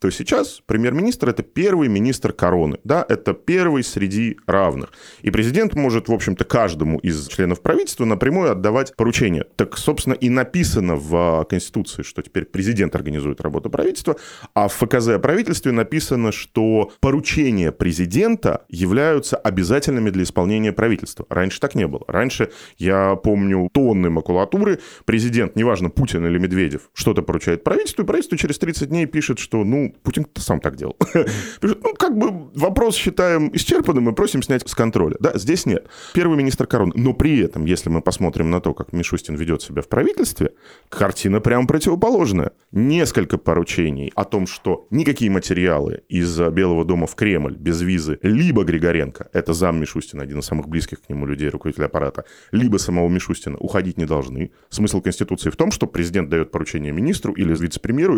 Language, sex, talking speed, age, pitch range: Russian, male, 165 wpm, 20-39, 85-125 Hz